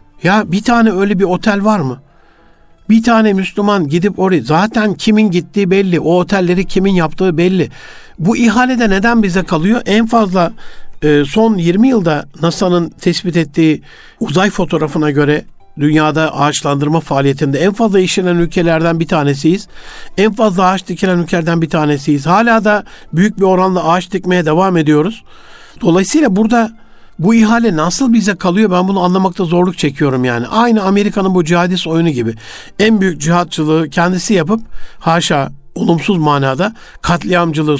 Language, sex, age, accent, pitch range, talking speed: Turkish, male, 60-79, native, 160-210 Hz, 145 wpm